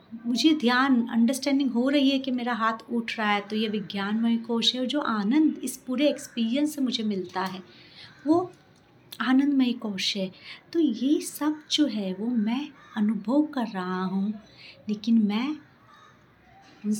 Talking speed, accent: 160 wpm, native